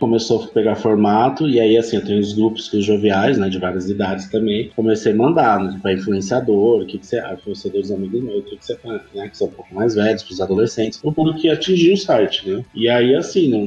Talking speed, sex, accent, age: 245 wpm, male, Brazilian, 20-39